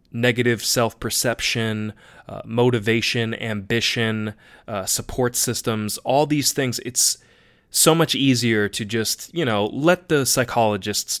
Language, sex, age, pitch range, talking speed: English, male, 20-39, 105-130 Hz, 120 wpm